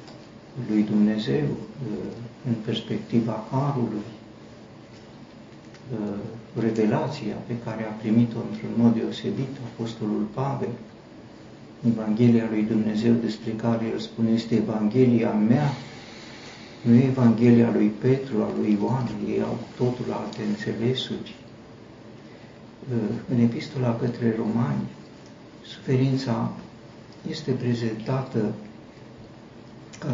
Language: Romanian